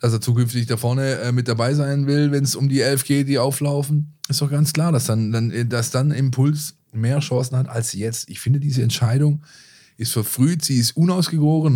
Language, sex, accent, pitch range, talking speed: German, male, German, 115-150 Hz, 205 wpm